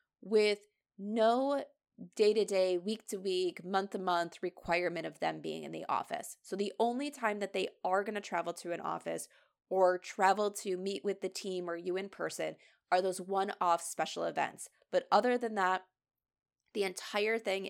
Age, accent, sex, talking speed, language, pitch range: 20-39, American, female, 165 wpm, English, 175-220 Hz